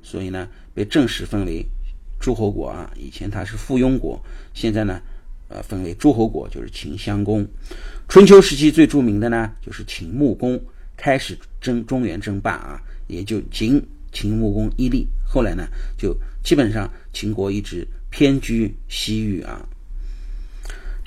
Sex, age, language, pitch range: male, 50-69, Chinese, 95-125 Hz